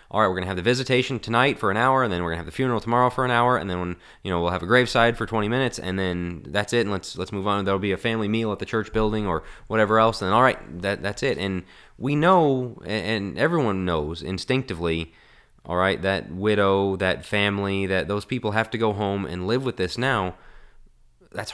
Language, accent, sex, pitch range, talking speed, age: English, American, male, 90-110 Hz, 245 wpm, 20-39